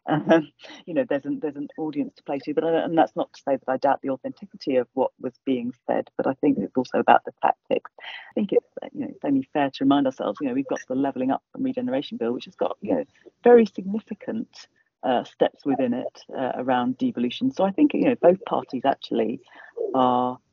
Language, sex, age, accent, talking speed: English, female, 40-59, British, 235 wpm